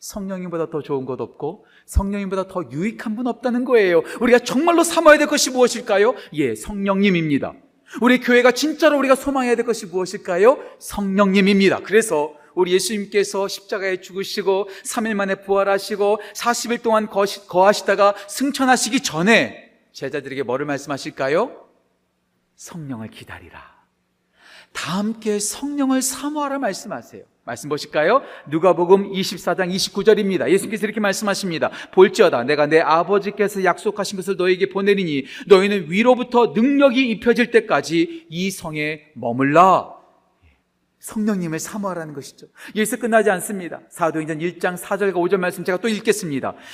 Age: 40-59